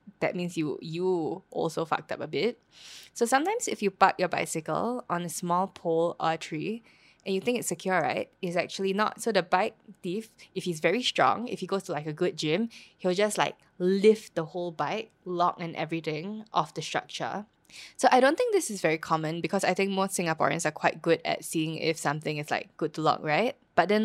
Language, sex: English, female